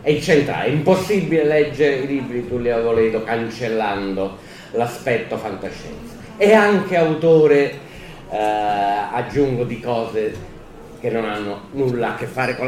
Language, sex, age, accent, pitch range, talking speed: Italian, male, 30-49, native, 95-130 Hz, 120 wpm